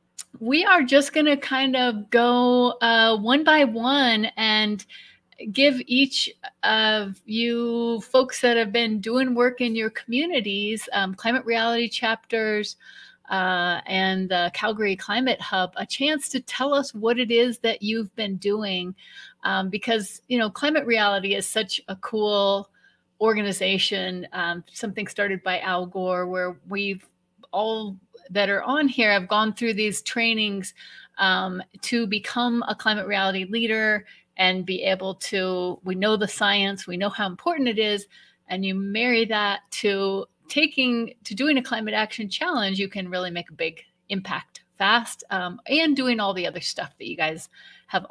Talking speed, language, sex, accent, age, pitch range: 160 wpm, English, female, American, 30-49, 195-245 Hz